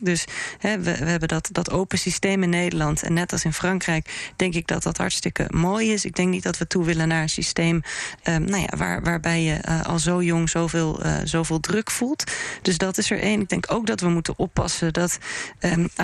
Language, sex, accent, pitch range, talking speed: Dutch, female, Dutch, 170-190 Hz, 215 wpm